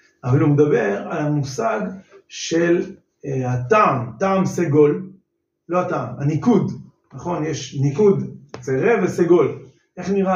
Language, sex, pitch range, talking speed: Hebrew, male, 155-235 Hz, 115 wpm